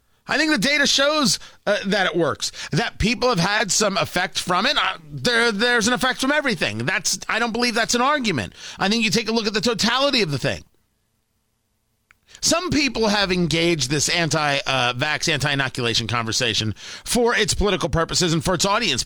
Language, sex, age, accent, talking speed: English, male, 40-59, American, 190 wpm